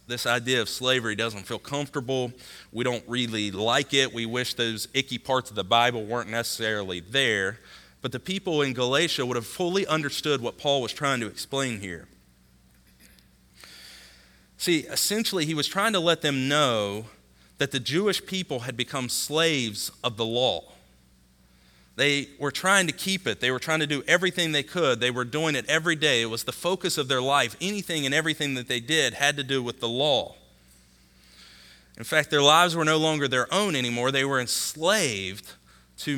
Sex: male